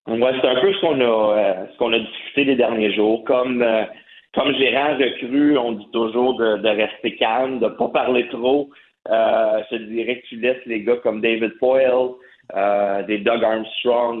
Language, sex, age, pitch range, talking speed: French, male, 30-49, 105-120 Hz, 195 wpm